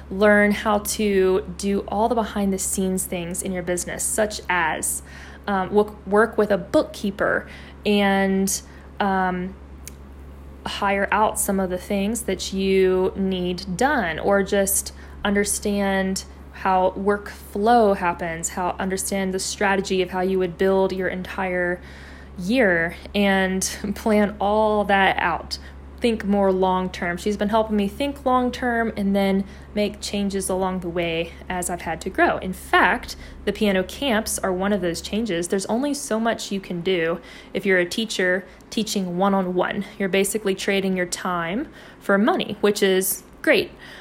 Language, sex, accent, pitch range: English, female, American, 185-210 Hz